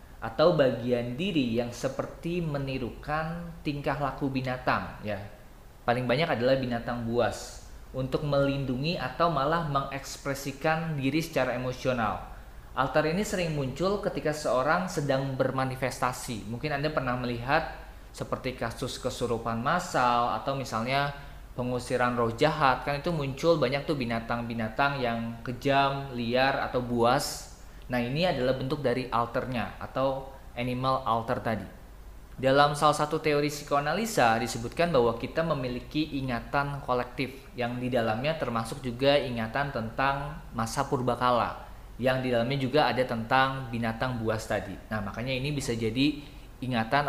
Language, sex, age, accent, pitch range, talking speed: Indonesian, male, 20-39, native, 120-145 Hz, 130 wpm